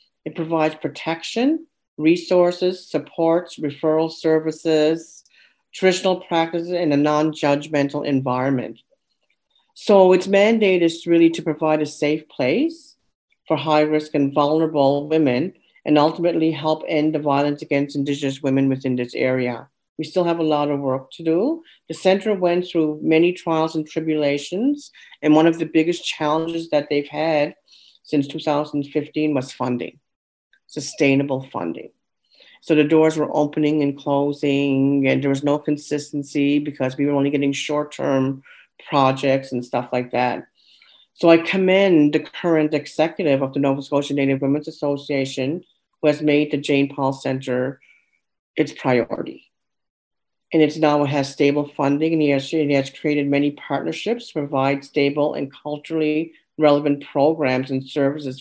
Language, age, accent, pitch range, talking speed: English, 50-69, American, 140-160 Hz, 145 wpm